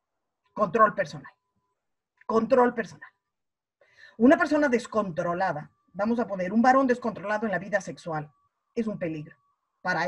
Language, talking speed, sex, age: Spanish, 125 wpm, female, 30-49